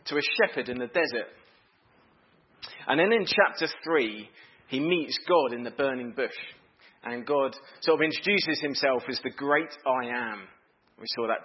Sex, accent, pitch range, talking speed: male, British, 125-170 Hz, 170 wpm